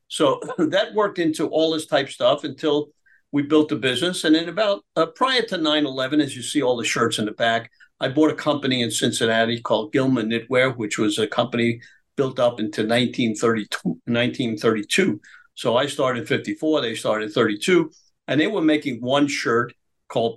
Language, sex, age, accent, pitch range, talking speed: English, male, 50-69, American, 115-150 Hz, 185 wpm